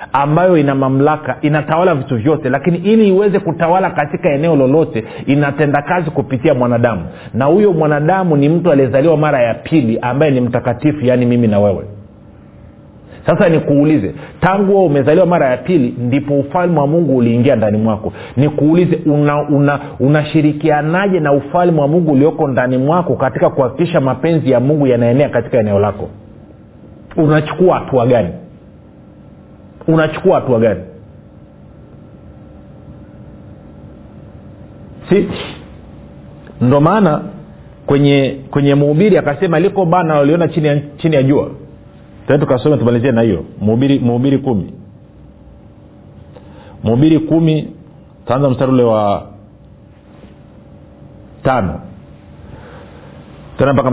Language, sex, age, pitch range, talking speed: Swahili, male, 40-59, 120-160 Hz, 115 wpm